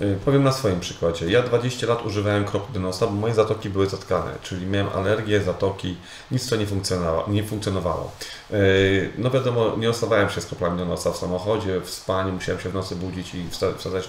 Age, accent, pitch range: 30-49, native, 95-115 Hz